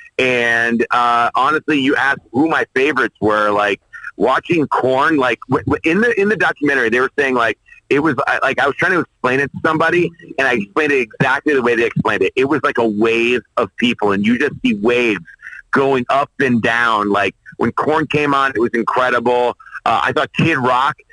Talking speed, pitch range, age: 215 wpm, 115-160 Hz, 40-59